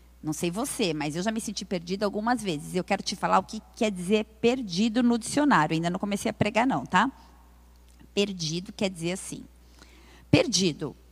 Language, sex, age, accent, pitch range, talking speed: Portuguese, female, 40-59, Brazilian, 175-225 Hz, 185 wpm